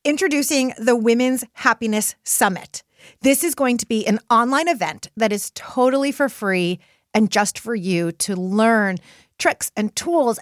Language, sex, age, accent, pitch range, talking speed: English, female, 30-49, American, 195-255 Hz, 155 wpm